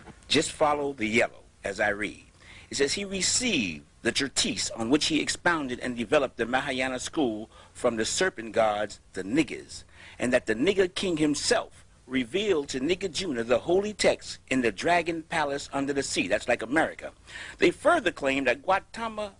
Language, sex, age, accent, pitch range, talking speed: English, male, 50-69, American, 130-195 Hz, 170 wpm